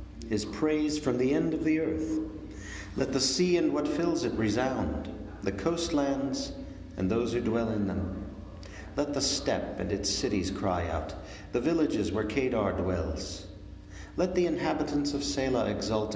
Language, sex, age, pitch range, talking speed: English, male, 50-69, 95-130 Hz, 160 wpm